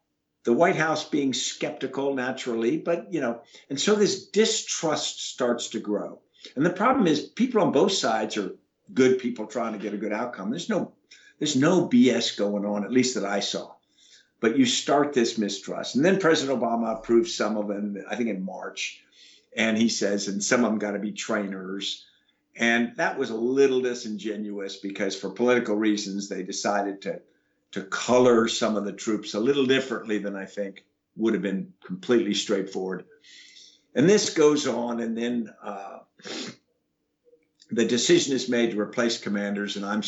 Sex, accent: male, American